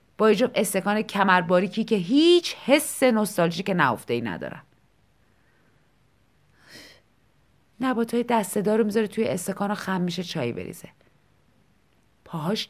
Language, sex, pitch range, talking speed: Persian, female, 170-235 Hz, 105 wpm